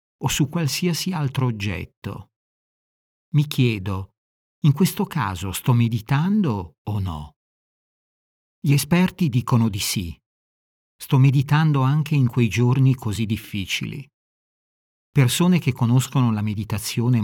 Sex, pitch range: male, 105-140 Hz